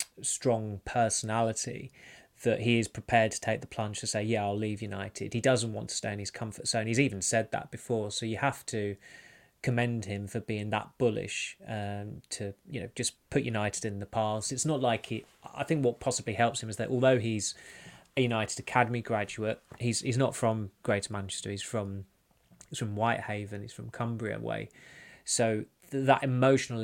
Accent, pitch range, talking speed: British, 105-120 Hz, 195 wpm